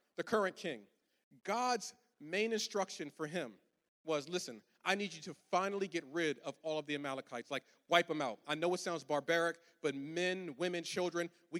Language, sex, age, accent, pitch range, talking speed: English, male, 40-59, American, 150-185 Hz, 185 wpm